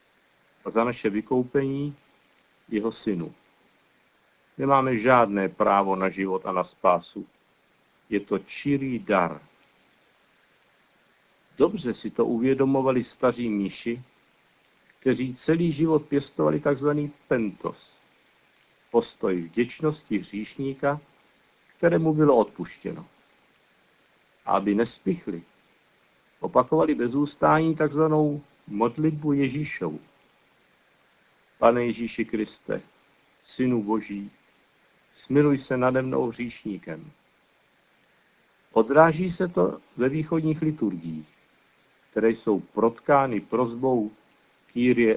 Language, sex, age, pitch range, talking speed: Czech, male, 50-69, 110-145 Hz, 85 wpm